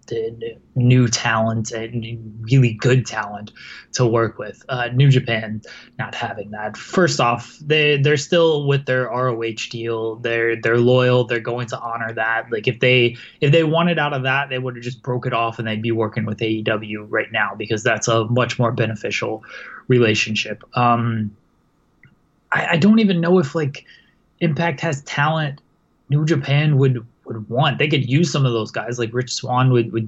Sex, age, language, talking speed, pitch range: male, 20-39, English, 180 wpm, 115-140 Hz